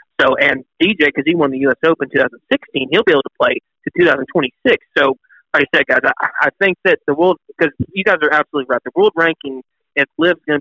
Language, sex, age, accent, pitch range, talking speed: English, male, 30-49, American, 145-210 Hz, 230 wpm